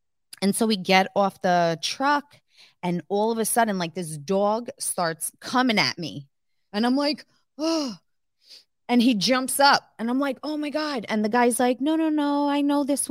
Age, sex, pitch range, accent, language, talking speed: 20-39, female, 185-255 Hz, American, English, 195 wpm